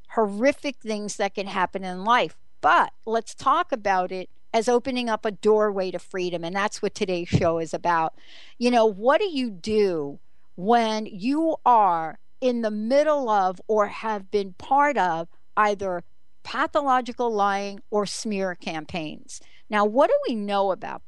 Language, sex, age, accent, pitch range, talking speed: English, female, 60-79, American, 195-255 Hz, 160 wpm